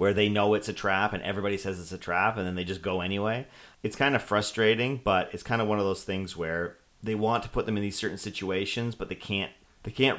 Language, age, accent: English, 40-59, American